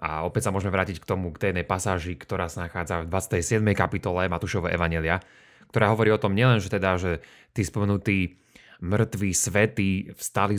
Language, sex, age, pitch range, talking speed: Slovak, male, 30-49, 95-120 Hz, 175 wpm